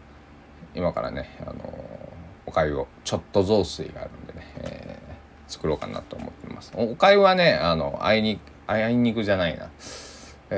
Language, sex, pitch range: Japanese, male, 80-130 Hz